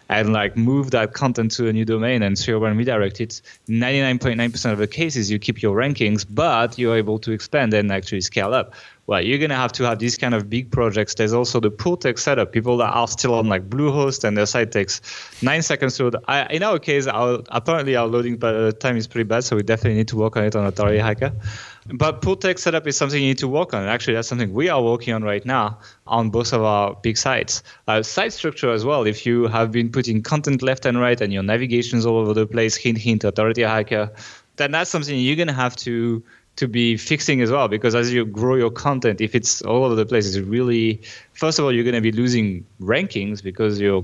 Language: English